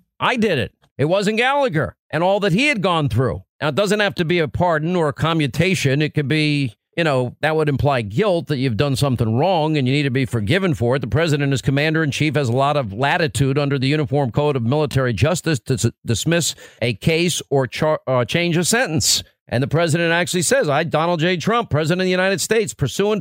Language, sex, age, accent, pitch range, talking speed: English, male, 50-69, American, 145-190 Hz, 235 wpm